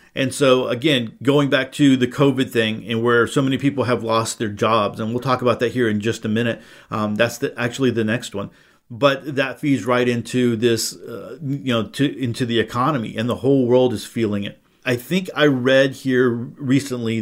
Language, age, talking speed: English, 50-69, 215 wpm